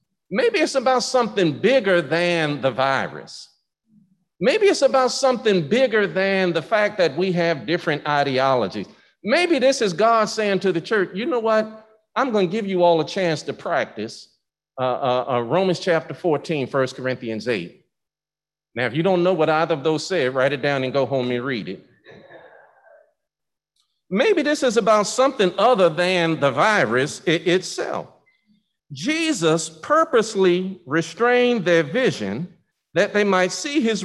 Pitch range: 155-220 Hz